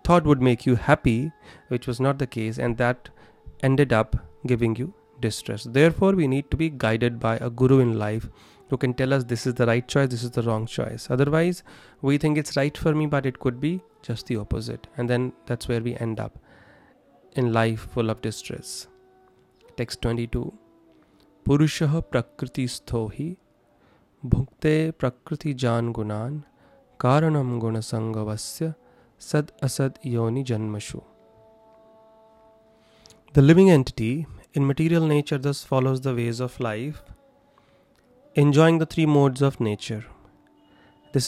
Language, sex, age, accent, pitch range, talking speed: English, male, 30-49, Indian, 115-145 Hz, 150 wpm